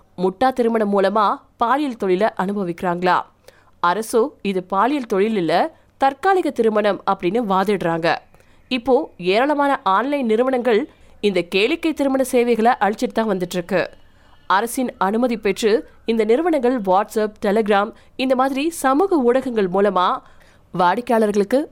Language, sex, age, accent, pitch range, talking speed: Tamil, female, 20-39, native, 195-255 Hz, 50 wpm